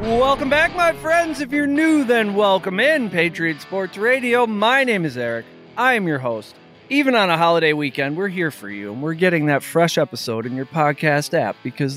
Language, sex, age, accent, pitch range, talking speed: English, male, 40-59, American, 155-240 Hz, 205 wpm